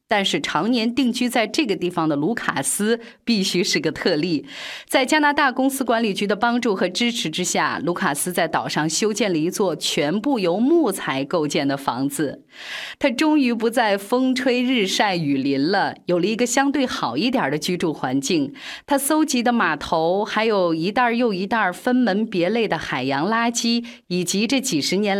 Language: Chinese